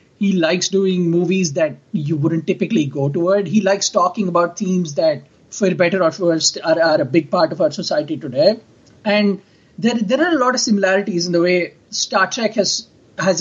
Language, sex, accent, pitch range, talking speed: English, male, Indian, 165-205 Hz, 200 wpm